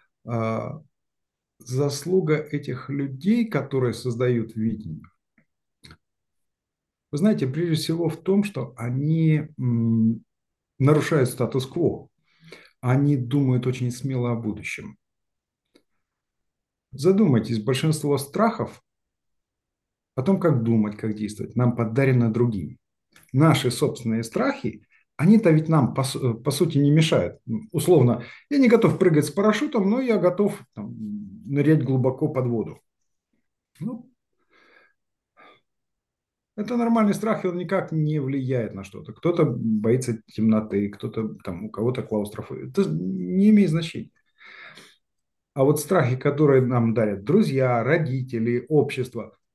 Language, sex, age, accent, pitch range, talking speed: Russian, male, 50-69, native, 120-165 Hz, 110 wpm